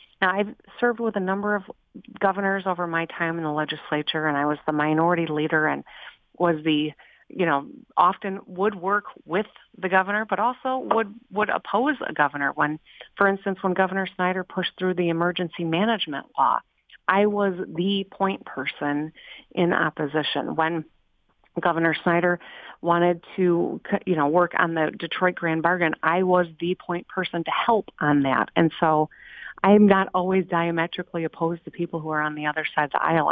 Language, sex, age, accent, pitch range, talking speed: English, female, 40-59, American, 155-190 Hz, 175 wpm